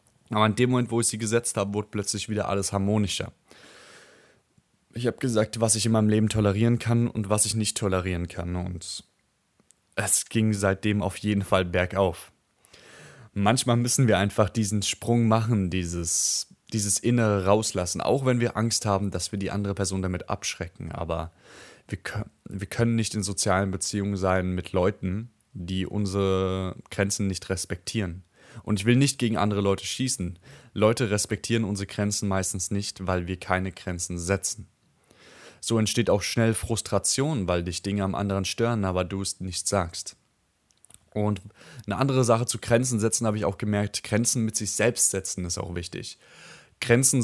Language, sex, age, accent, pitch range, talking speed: German, male, 20-39, German, 95-115 Hz, 165 wpm